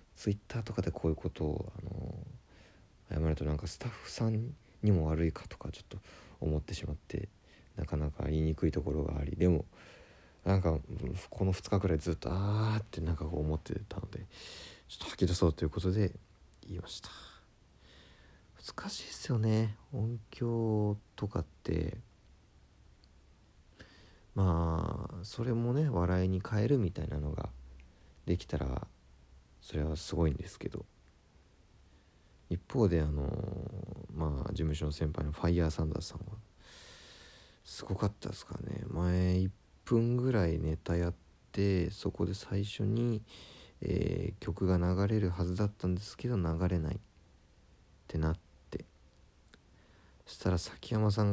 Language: Japanese